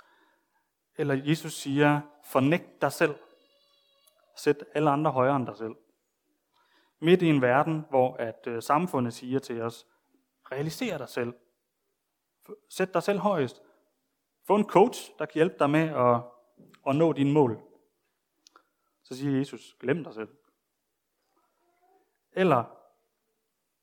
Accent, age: native, 30-49